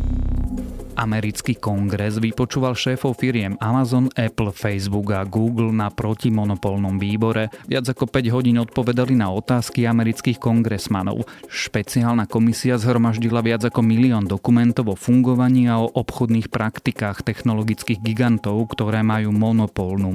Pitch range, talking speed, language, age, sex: 100-120 Hz, 120 wpm, Slovak, 30-49, male